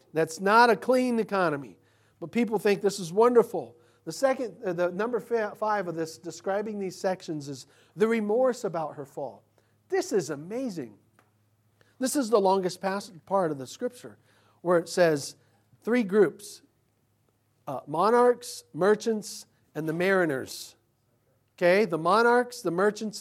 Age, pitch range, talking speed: 40-59, 150-215 Hz, 140 wpm